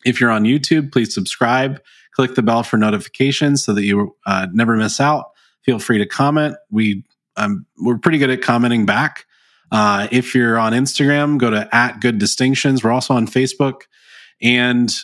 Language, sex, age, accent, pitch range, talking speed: English, male, 20-39, American, 110-135 Hz, 185 wpm